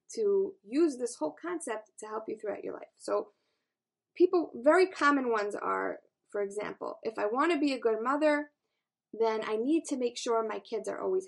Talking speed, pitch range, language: 190 wpm, 220-330 Hz, English